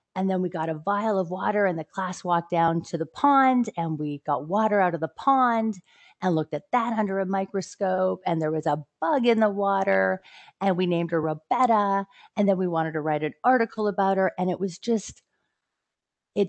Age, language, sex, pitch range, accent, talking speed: 30-49, English, female, 155-195 Hz, American, 215 wpm